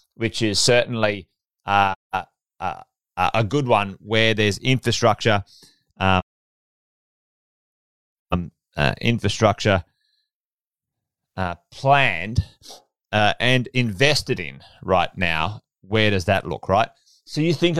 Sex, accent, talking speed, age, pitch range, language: male, Australian, 110 wpm, 30-49, 105-145 Hz, English